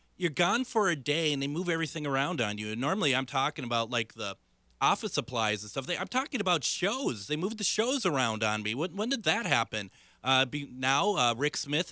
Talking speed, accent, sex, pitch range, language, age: 230 wpm, American, male, 110-140 Hz, English, 30-49